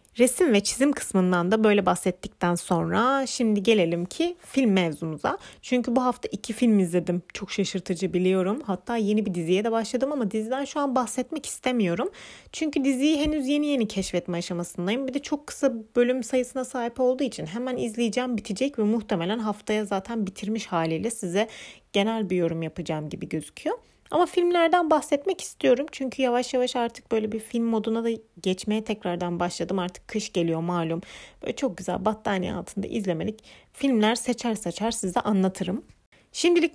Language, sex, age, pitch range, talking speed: Turkish, female, 30-49, 185-260 Hz, 160 wpm